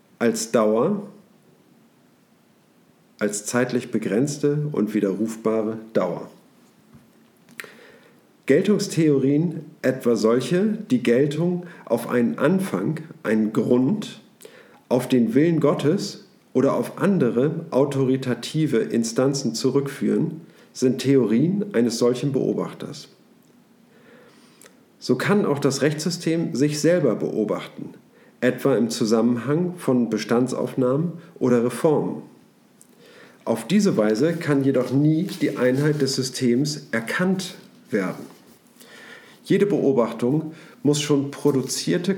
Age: 50-69